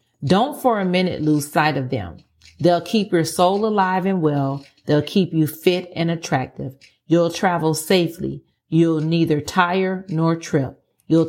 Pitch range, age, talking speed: 150-185 Hz, 40-59, 160 wpm